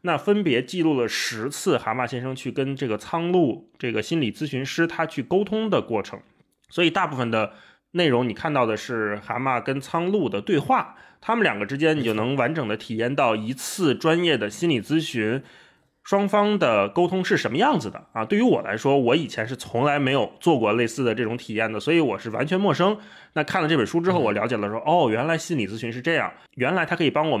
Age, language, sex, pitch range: 20-39, Chinese, male, 125-195 Hz